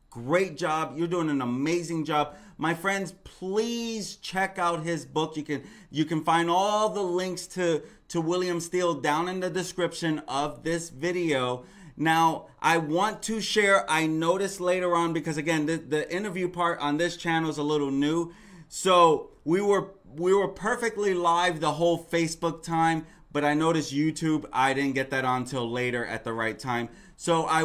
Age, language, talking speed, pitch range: 30-49, English, 180 wpm, 145-180 Hz